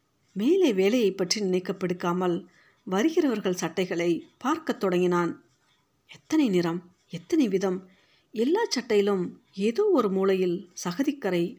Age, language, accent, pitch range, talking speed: 50-69, Tamil, native, 180-230 Hz, 95 wpm